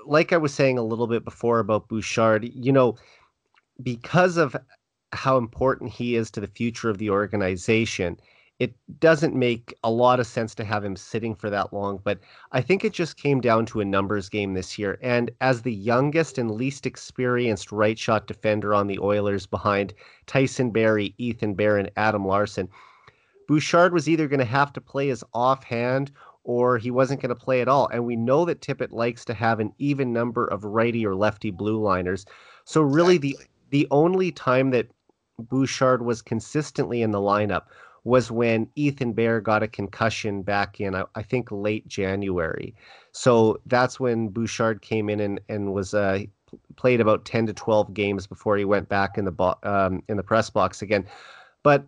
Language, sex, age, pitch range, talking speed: English, male, 30-49, 105-130 Hz, 190 wpm